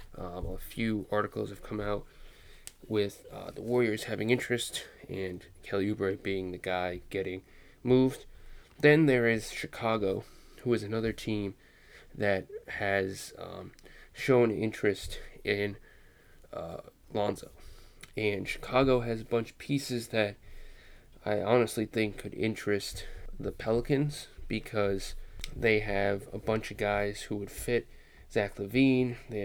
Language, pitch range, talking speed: English, 100-115 Hz, 130 wpm